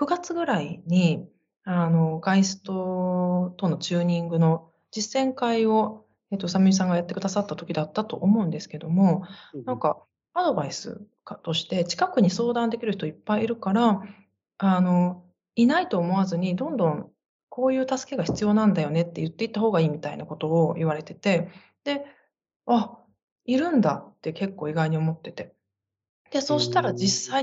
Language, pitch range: Japanese, 170-225 Hz